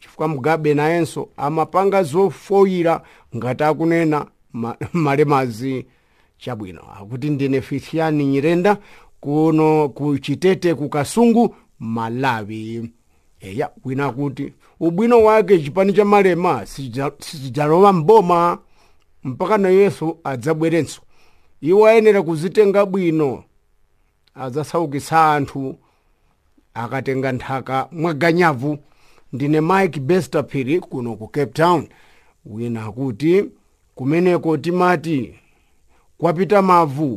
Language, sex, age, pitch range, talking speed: English, male, 50-69, 130-175 Hz, 100 wpm